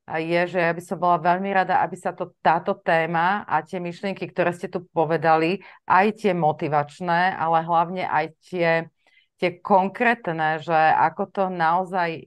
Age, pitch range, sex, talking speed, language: 30-49, 155-180 Hz, female, 160 wpm, Slovak